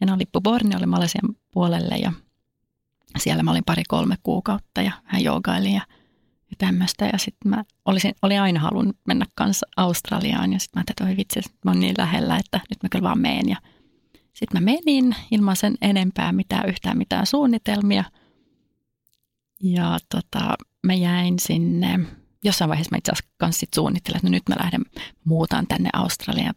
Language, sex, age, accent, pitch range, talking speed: Finnish, female, 30-49, native, 180-210 Hz, 175 wpm